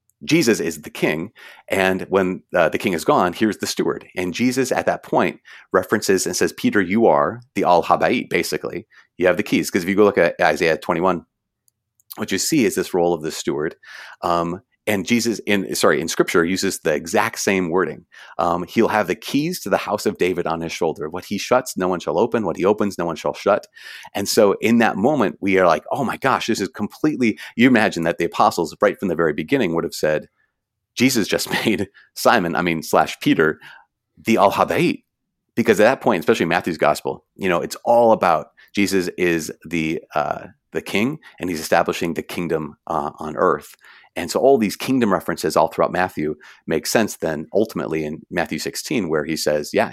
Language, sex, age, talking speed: English, male, 30-49, 205 wpm